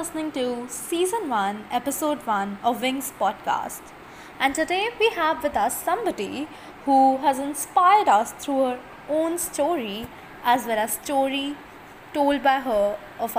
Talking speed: 145 wpm